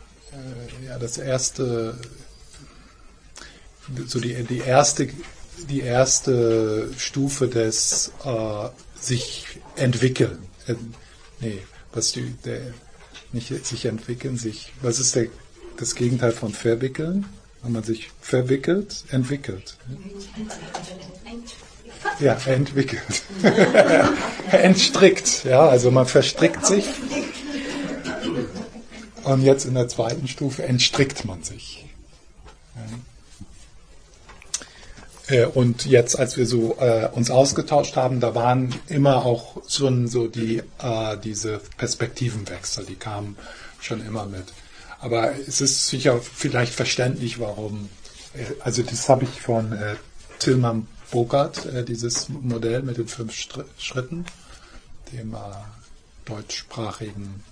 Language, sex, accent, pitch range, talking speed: German, male, German, 115-140 Hz, 100 wpm